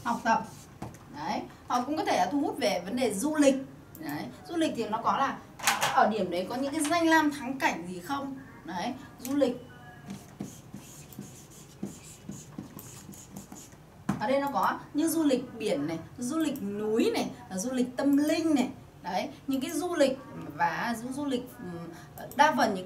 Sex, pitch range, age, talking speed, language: female, 220-285 Hz, 20-39, 170 wpm, Vietnamese